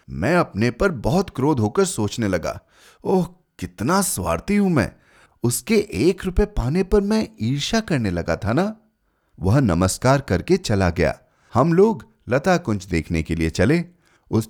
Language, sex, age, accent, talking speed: Hindi, male, 30-49, native, 155 wpm